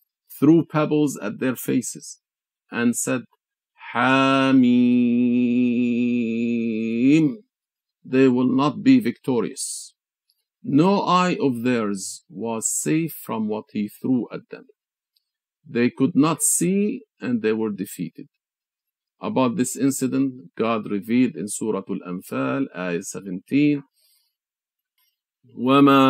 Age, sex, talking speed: 50-69, male, 100 wpm